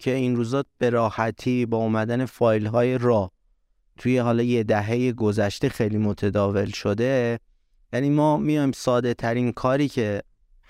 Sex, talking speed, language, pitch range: male, 145 wpm, Persian, 110-145 Hz